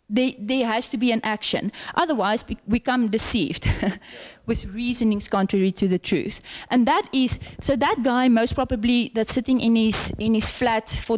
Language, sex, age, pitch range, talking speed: English, female, 20-39, 210-270 Hz, 170 wpm